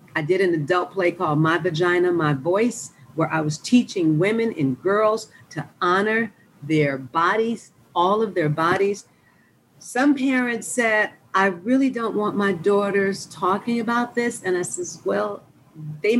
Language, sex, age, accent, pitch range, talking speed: English, female, 50-69, American, 165-235 Hz, 155 wpm